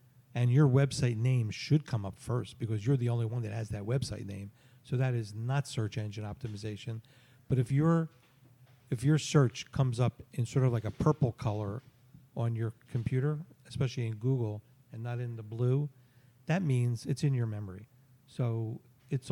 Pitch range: 115-135 Hz